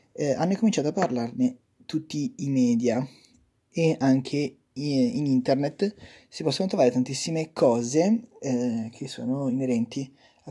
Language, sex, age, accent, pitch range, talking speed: Italian, male, 20-39, native, 130-170 Hz, 130 wpm